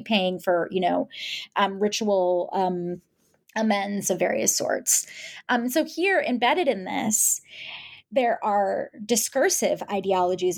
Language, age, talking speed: English, 20-39, 120 wpm